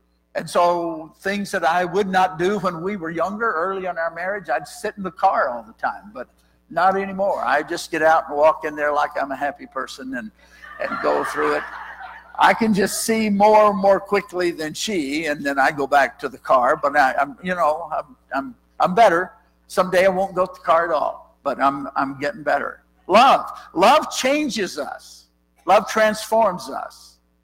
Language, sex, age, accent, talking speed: English, male, 60-79, American, 205 wpm